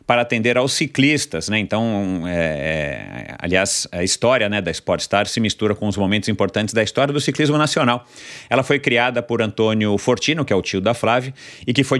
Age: 40-59